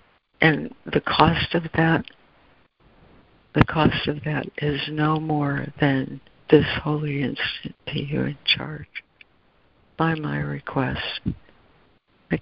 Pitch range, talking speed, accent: 135-165 Hz, 115 wpm, American